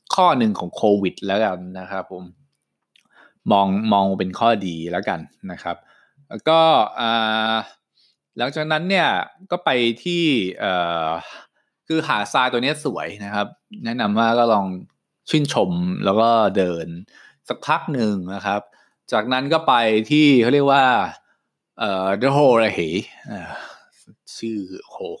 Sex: male